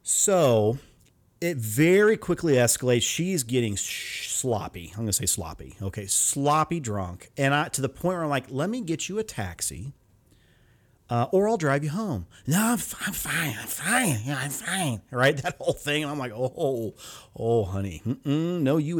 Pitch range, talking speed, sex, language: 110-150 Hz, 190 wpm, male, English